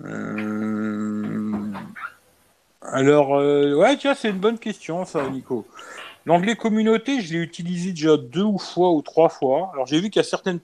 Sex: male